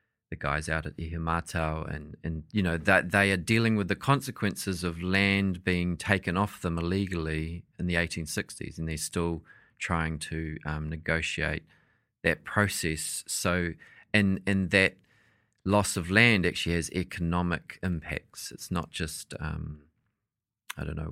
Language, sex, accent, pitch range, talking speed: English, male, Australian, 80-95 Hz, 150 wpm